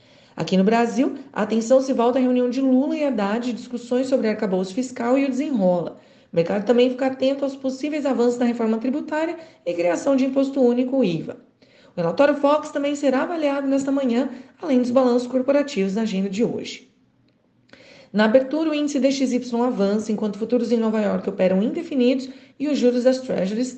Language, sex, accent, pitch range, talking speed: Portuguese, female, Brazilian, 230-275 Hz, 180 wpm